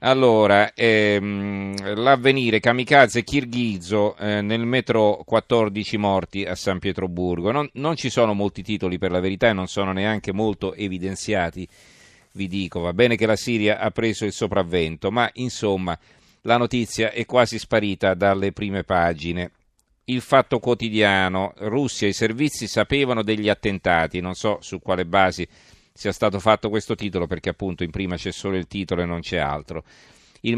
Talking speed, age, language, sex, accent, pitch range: 160 wpm, 40-59, Italian, male, native, 95-115 Hz